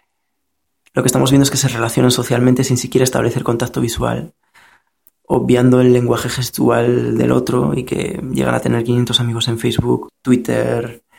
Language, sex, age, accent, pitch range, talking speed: Spanish, male, 20-39, Spanish, 115-130 Hz, 160 wpm